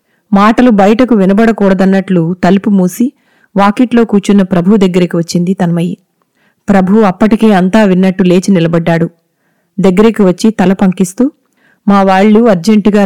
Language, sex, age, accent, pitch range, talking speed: Telugu, female, 20-39, native, 185-225 Hz, 105 wpm